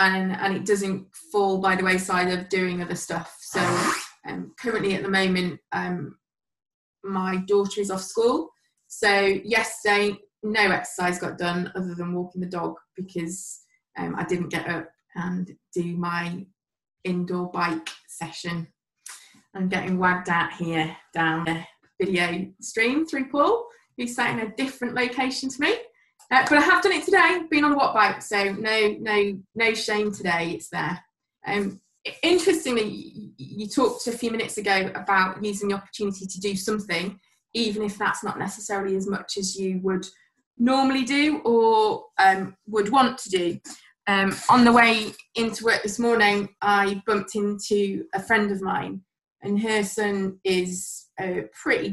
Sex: female